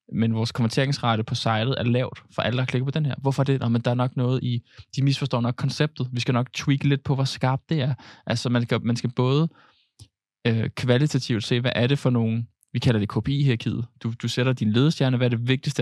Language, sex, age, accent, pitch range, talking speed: Danish, male, 20-39, native, 115-130 Hz, 245 wpm